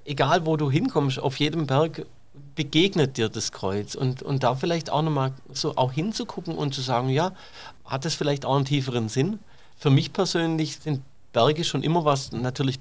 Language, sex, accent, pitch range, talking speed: German, male, German, 130-155 Hz, 185 wpm